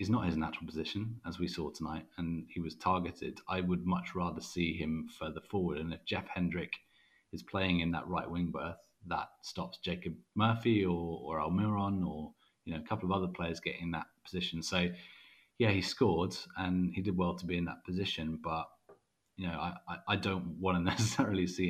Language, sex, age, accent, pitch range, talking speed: English, male, 30-49, British, 85-90 Hz, 210 wpm